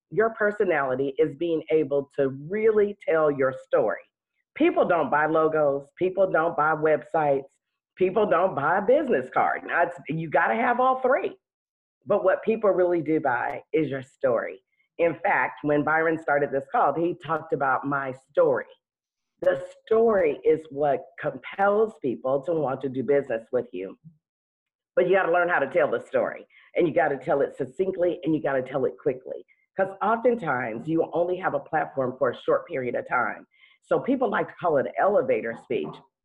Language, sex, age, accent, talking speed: English, female, 40-59, American, 180 wpm